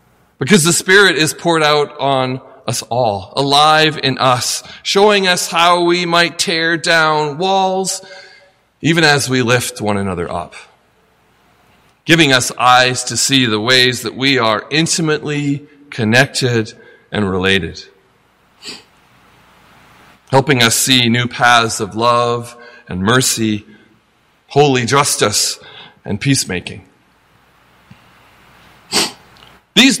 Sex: male